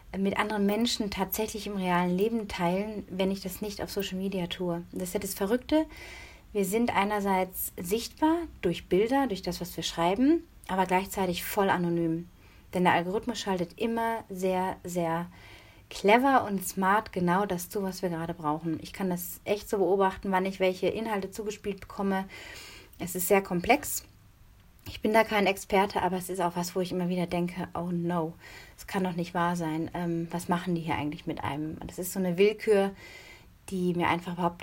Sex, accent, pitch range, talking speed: female, German, 170-200 Hz, 185 wpm